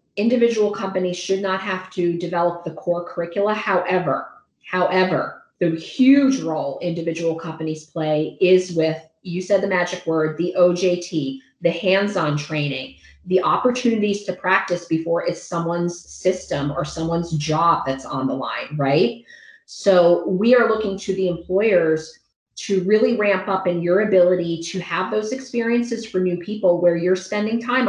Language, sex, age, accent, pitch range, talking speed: English, female, 30-49, American, 165-200 Hz, 155 wpm